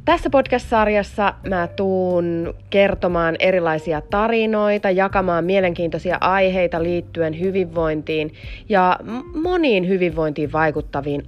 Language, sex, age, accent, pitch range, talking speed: Finnish, female, 30-49, native, 145-185 Hz, 85 wpm